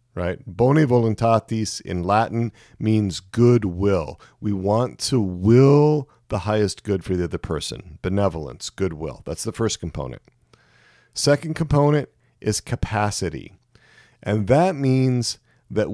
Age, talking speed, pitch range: 40-59, 120 wpm, 95-125 Hz